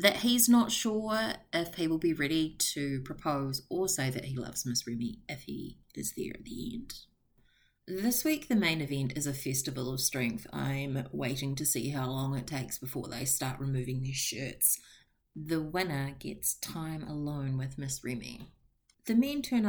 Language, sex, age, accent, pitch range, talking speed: English, female, 30-49, Australian, 130-165 Hz, 185 wpm